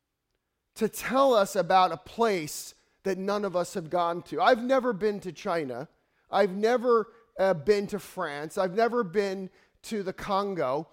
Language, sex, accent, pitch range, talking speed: English, male, American, 200-250 Hz, 165 wpm